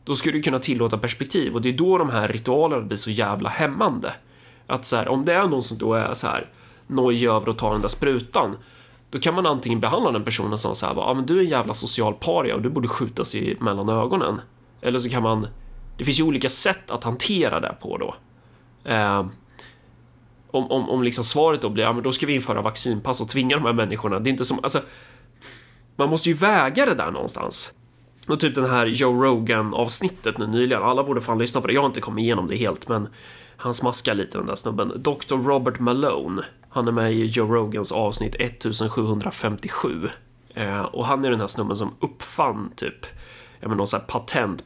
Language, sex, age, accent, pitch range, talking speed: Swedish, male, 30-49, native, 110-130 Hz, 215 wpm